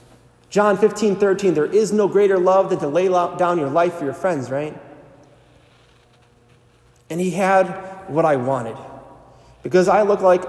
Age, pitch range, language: 30-49, 140-190 Hz, English